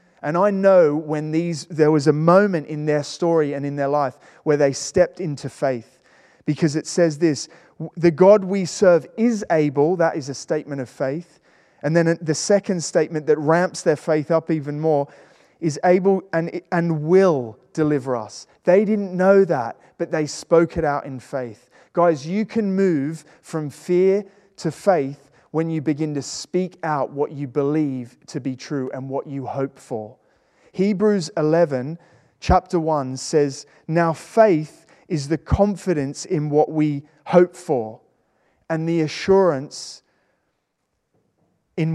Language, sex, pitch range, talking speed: English, male, 140-175 Hz, 160 wpm